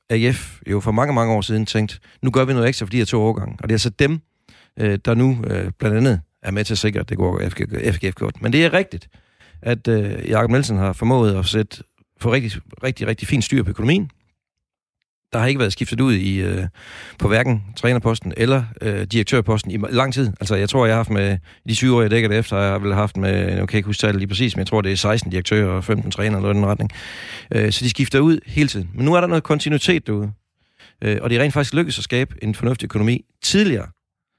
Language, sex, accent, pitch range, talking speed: Danish, male, native, 105-140 Hz, 240 wpm